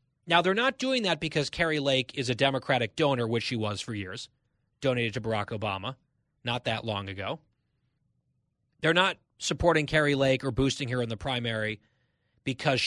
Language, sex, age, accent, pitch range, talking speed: English, male, 30-49, American, 125-165 Hz, 175 wpm